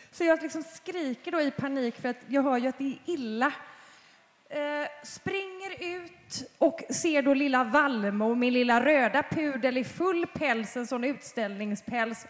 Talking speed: 170 wpm